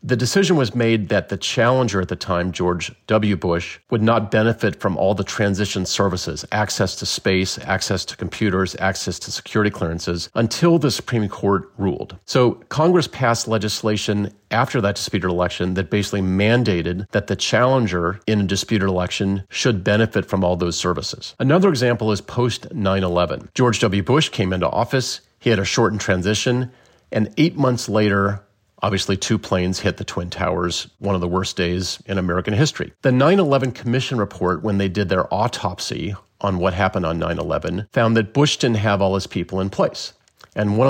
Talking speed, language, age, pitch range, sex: 180 wpm, English, 40-59, 95-120 Hz, male